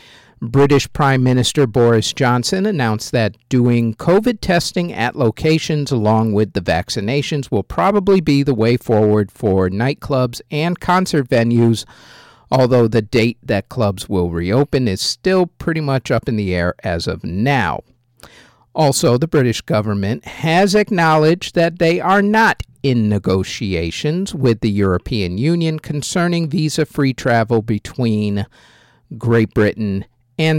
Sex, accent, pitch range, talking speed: male, American, 105-145 Hz, 135 wpm